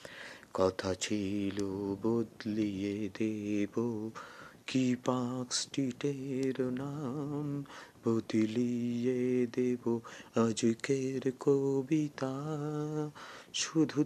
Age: 30-49